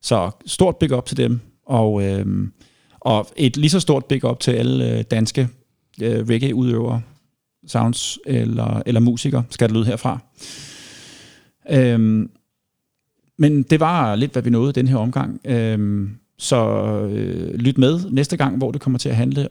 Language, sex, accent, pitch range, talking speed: Danish, male, native, 115-135 Hz, 155 wpm